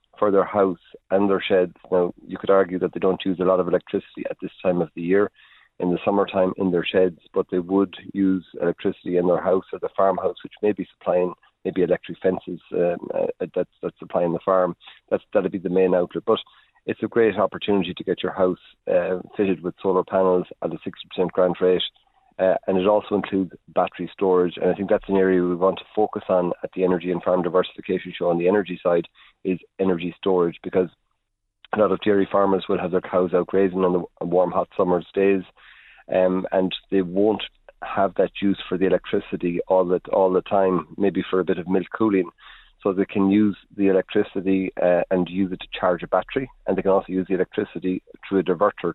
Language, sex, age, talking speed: English, male, 40-59, 215 wpm